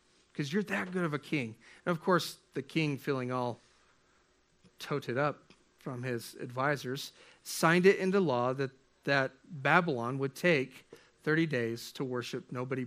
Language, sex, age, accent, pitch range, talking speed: English, male, 40-59, American, 135-175 Hz, 155 wpm